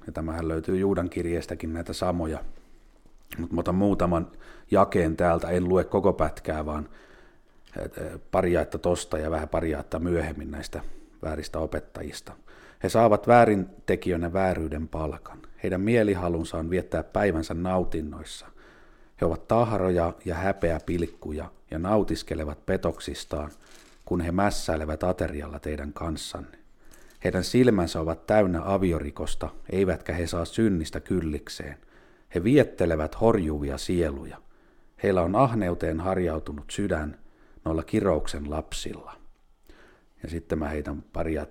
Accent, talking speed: native, 115 wpm